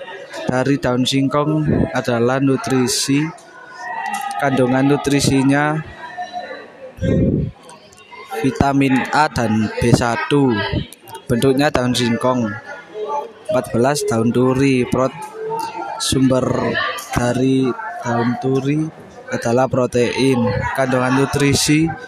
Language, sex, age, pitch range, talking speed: Indonesian, male, 20-39, 125-145 Hz, 70 wpm